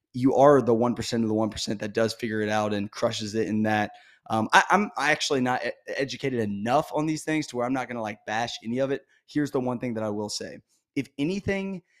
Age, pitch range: 20-39, 115-150 Hz